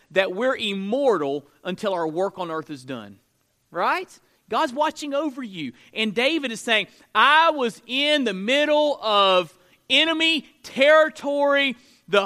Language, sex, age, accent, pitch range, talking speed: English, male, 40-59, American, 155-255 Hz, 135 wpm